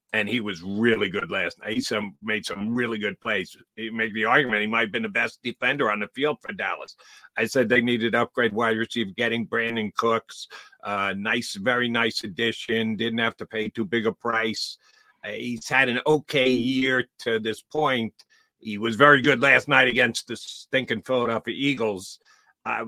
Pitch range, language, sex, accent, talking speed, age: 115-150 Hz, English, male, American, 190 wpm, 50-69